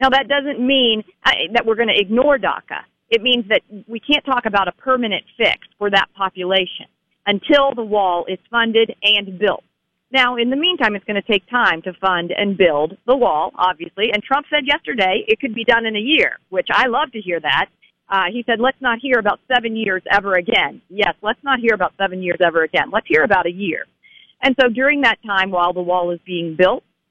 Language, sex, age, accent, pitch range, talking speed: English, female, 40-59, American, 190-250 Hz, 220 wpm